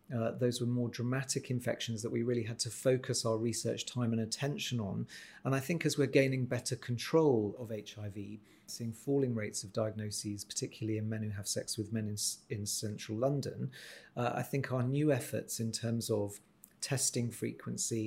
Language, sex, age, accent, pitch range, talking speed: English, male, 40-59, British, 105-125 Hz, 185 wpm